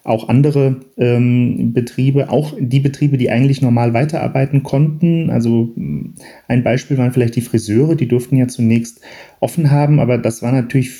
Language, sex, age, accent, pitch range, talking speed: German, male, 40-59, German, 115-130 Hz, 160 wpm